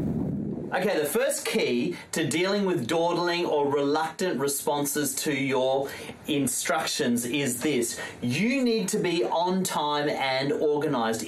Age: 30-49